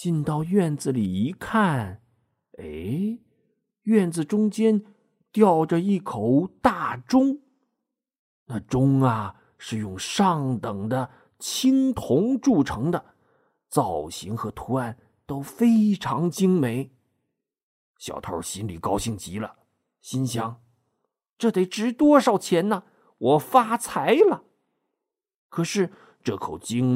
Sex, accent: male, native